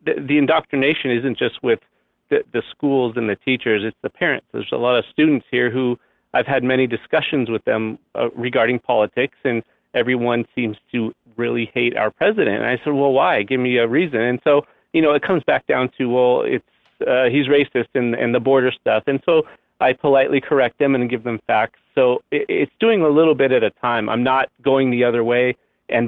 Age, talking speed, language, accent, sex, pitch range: 40-59, 215 wpm, English, American, male, 120-145 Hz